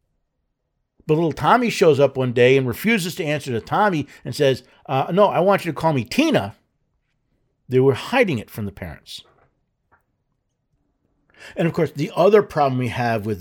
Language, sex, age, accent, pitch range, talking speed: English, male, 50-69, American, 125-170 Hz, 175 wpm